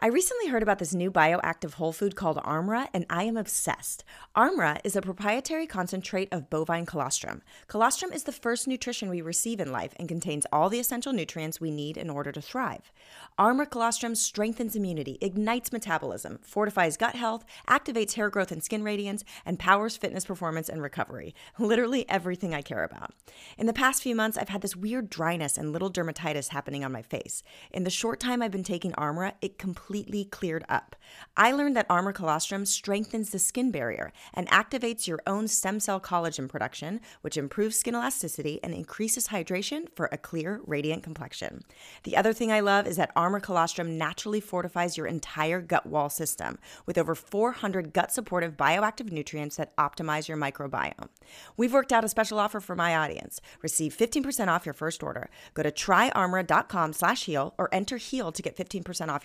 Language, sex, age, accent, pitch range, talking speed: English, female, 30-49, American, 160-220 Hz, 185 wpm